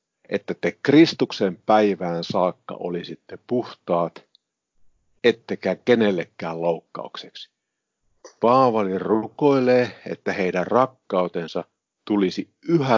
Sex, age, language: male, 50-69, Finnish